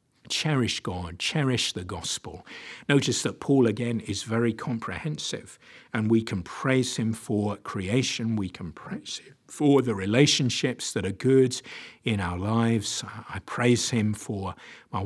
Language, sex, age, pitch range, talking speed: English, male, 50-69, 100-120 Hz, 150 wpm